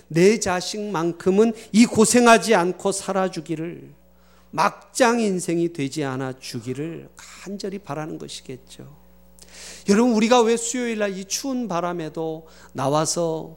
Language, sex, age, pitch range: Korean, male, 40-59, 125-195 Hz